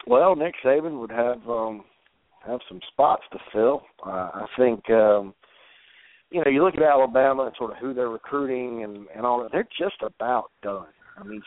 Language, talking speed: English, 200 wpm